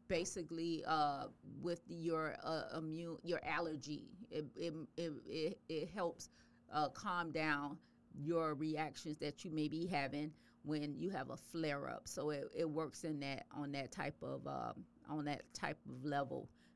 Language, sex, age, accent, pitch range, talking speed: English, female, 40-59, American, 145-165 Hz, 160 wpm